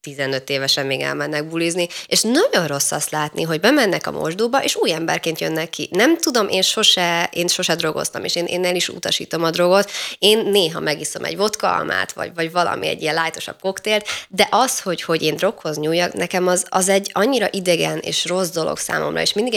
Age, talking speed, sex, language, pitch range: 20-39, 200 wpm, female, Hungarian, 155-205 Hz